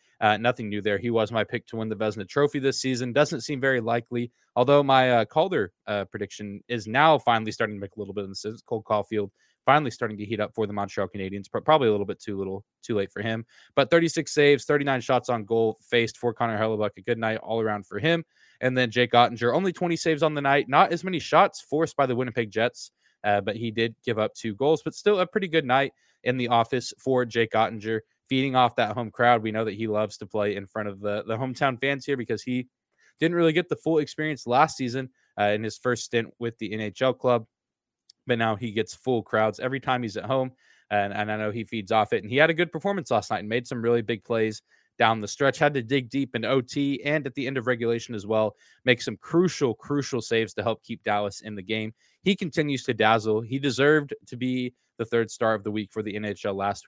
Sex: male